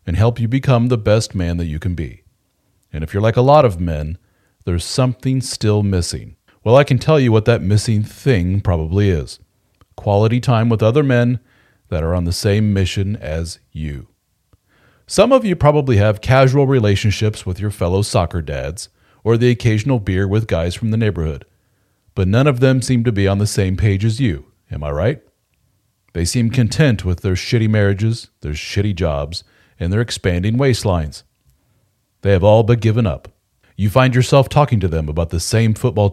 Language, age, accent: English, 40-59, American